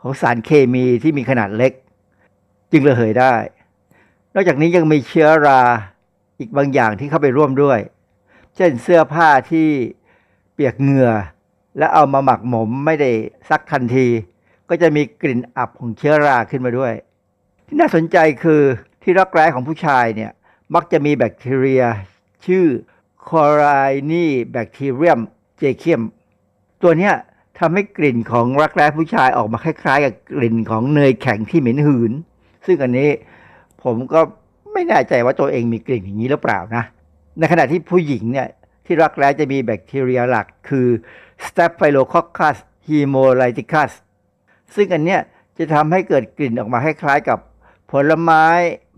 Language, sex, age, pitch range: Thai, male, 60-79, 120-160 Hz